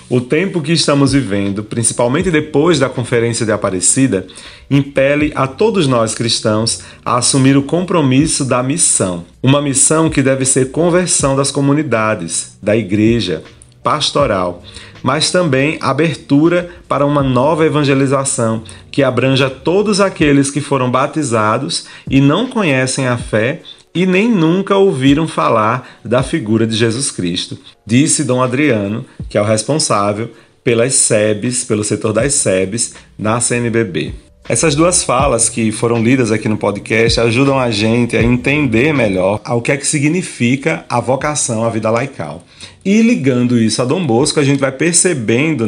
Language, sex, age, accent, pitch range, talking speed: Portuguese, male, 40-59, Brazilian, 115-150 Hz, 145 wpm